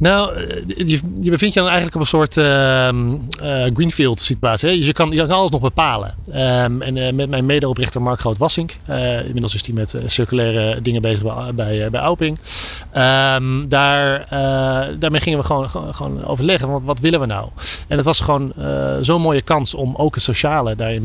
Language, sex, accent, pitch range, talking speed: Dutch, male, Dutch, 115-145 Hz, 200 wpm